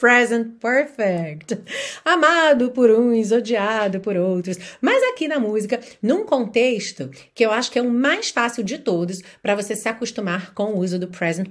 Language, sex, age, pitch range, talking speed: Portuguese, female, 30-49, 180-250 Hz, 170 wpm